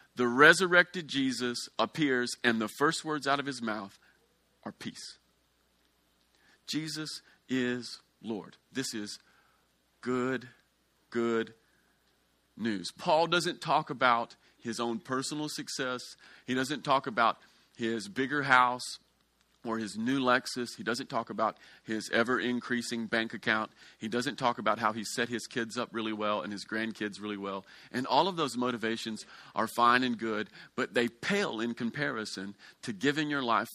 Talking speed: 150 wpm